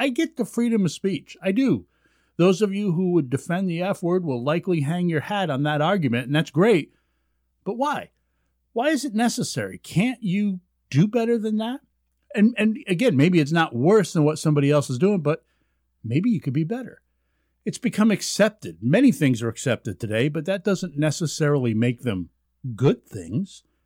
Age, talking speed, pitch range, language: 50-69, 190 wpm, 115-190 Hz, English